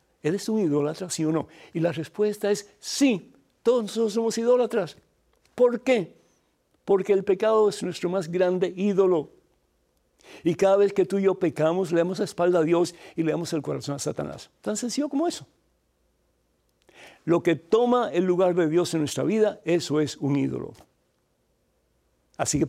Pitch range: 135-195 Hz